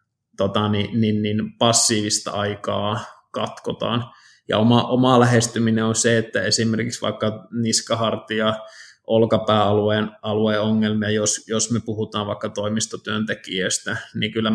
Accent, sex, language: native, male, Finnish